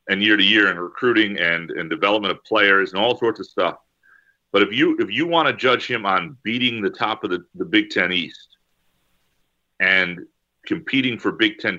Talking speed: 200 wpm